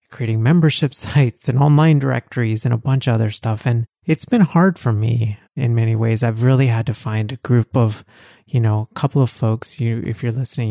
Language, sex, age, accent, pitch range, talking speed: English, male, 30-49, American, 110-130 Hz, 220 wpm